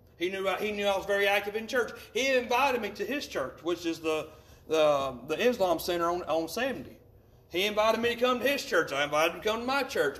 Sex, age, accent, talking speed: male, 40-59, American, 255 wpm